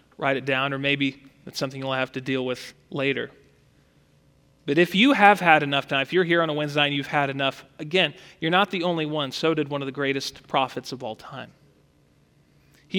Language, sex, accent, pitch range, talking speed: English, male, American, 140-205 Hz, 215 wpm